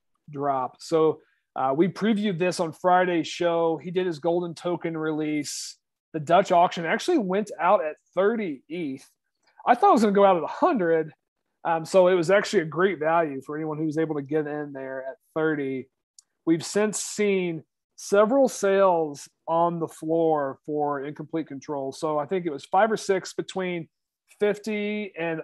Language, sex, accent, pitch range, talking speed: English, male, American, 140-180 Hz, 175 wpm